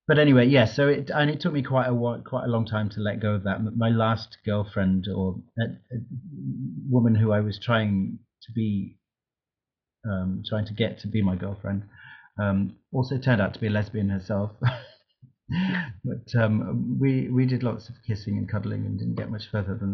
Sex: male